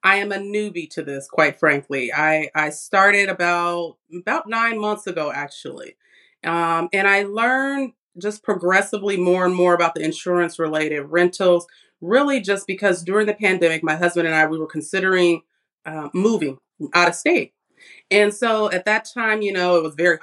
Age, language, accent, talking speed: 30-49, English, American, 175 wpm